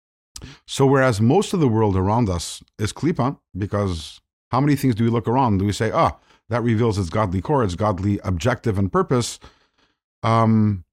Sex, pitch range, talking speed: male, 100-135 Hz, 185 wpm